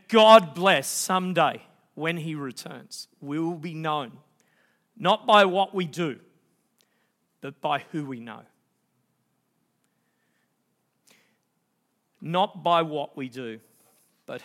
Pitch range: 160-210 Hz